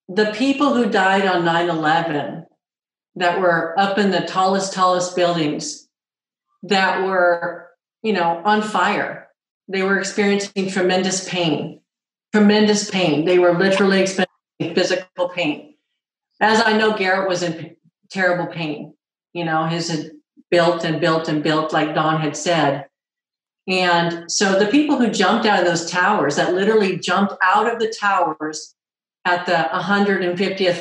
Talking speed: 140 wpm